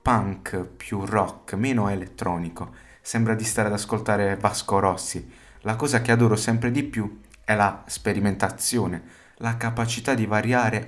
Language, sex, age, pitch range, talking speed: Italian, male, 20-39, 90-120 Hz, 145 wpm